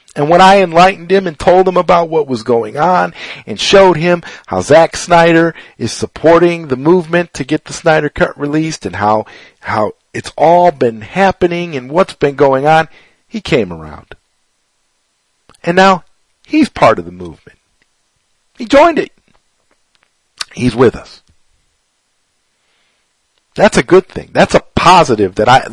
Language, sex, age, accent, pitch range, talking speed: English, male, 50-69, American, 125-180 Hz, 155 wpm